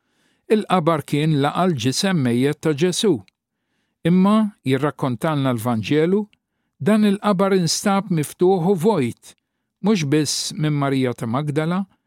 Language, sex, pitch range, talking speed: English, male, 140-195 Hz, 85 wpm